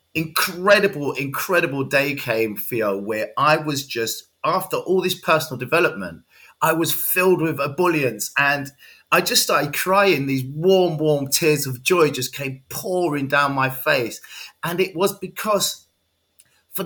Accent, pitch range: British, 115-160 Hz